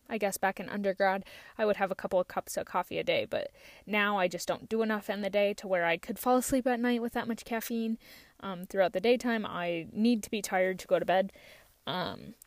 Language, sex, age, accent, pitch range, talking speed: English, female, 20-39, American, 190-235 Hz, 250 wpm